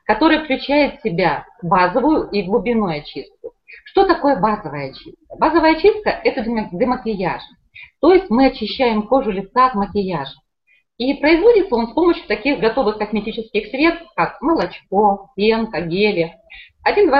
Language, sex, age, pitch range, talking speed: Russian, female, 30-49, 185-295 Hz, 135 wpm